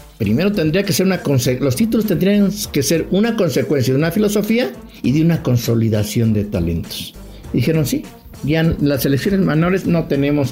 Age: 60-79